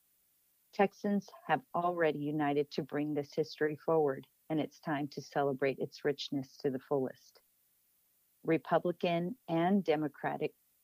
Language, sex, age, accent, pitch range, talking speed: English, female, 50-69, American, 135-155 Hz, 120 wpm